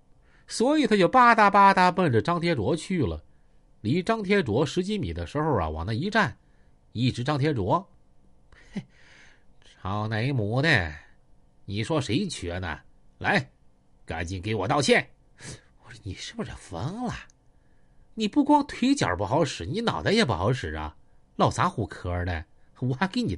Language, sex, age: Chinese, male, 50-69